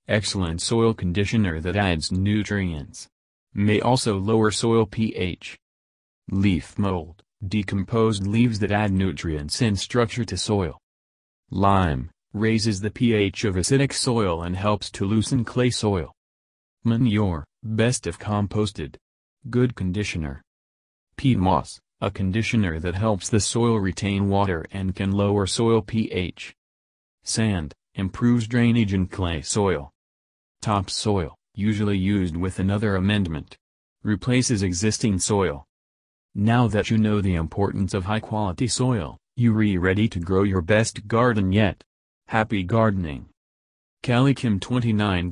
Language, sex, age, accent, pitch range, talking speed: English, male, 30-49, American, 90-110 Hz, 125 wpm